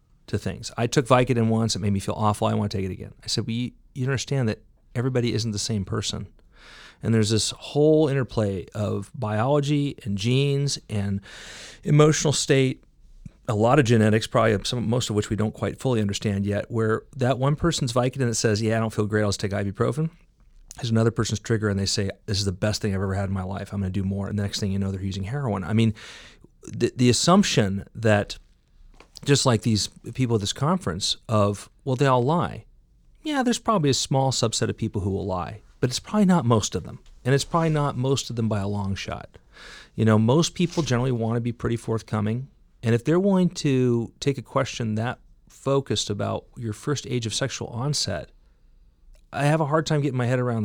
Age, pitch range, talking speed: 40-59, 105-135 Hz, 220 wpm